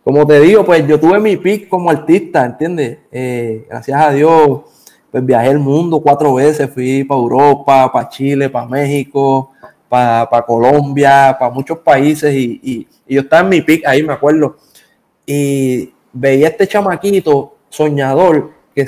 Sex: male